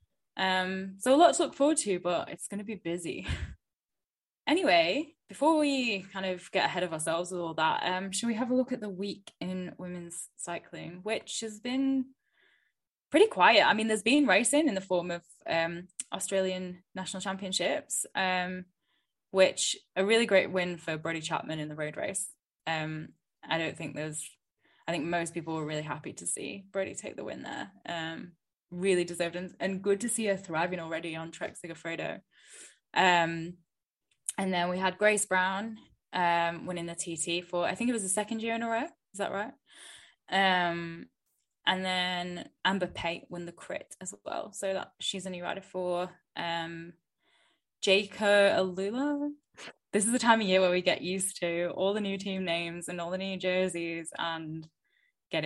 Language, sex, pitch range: English, female, 170-205 Hz